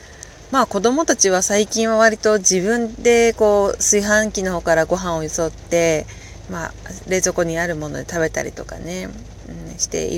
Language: Japanese